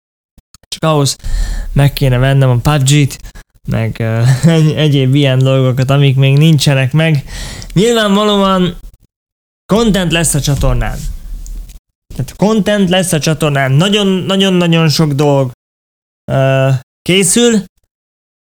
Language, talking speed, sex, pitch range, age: Hungarian, 100 wpm, male, 135-180 Hz, 20-39